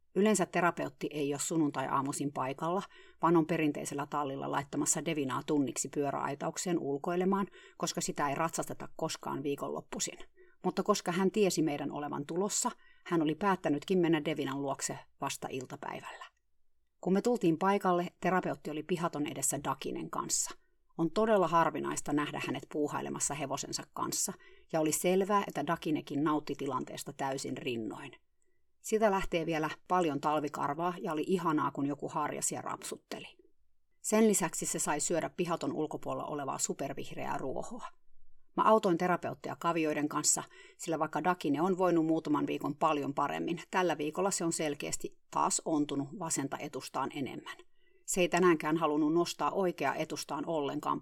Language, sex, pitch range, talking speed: Finnish, female, 150-195 Hz, 140 wpm